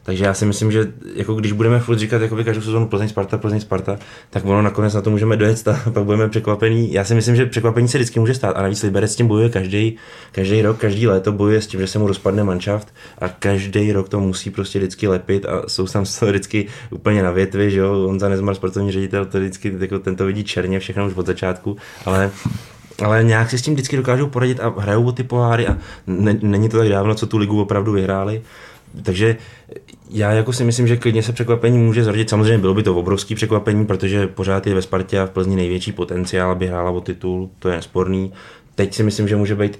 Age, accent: 20-39, native